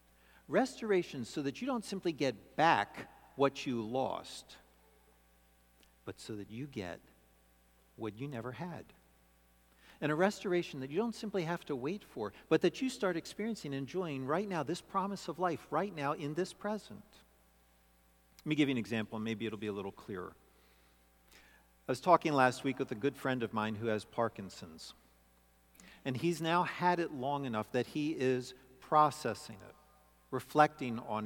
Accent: American